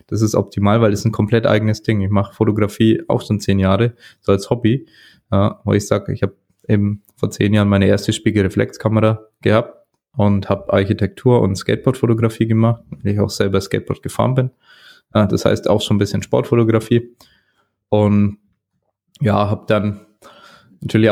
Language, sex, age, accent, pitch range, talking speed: German, male, 20-39, German, 100-110 Hz, 165 wpm